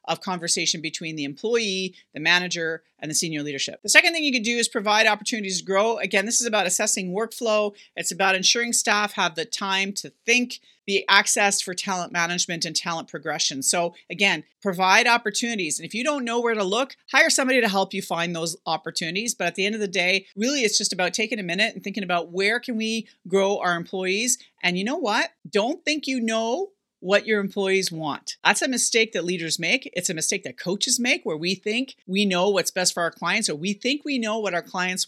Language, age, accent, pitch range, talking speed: English, 40-59, American, 170-230 Hz, 220 wpm